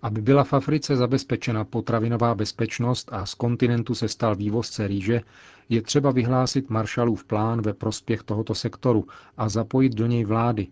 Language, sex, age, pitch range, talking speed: Czech, male, 40-59, 110-125 Hz, 155 wpm